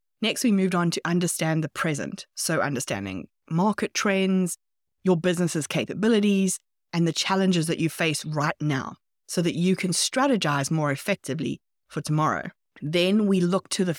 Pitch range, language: 165-195 Hz, English